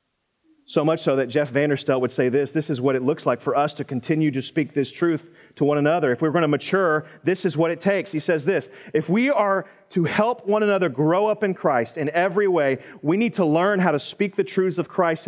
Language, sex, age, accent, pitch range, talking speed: English, male, 30-49, American, 125-170 Hz, 250 wpm